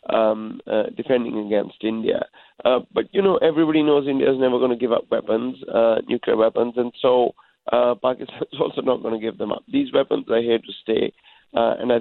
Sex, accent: male, Indian